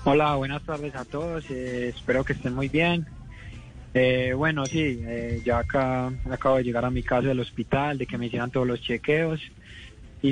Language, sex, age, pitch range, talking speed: Spanish, male, 20-39, 125-145 Hz, 190 wpm